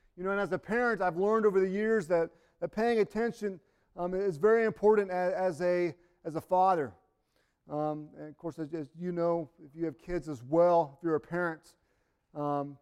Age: 40-59